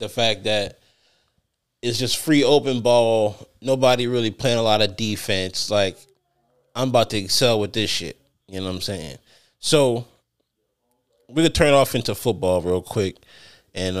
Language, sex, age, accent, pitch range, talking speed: English, male, 20-39, American, 95-120 Hz, 165 wpm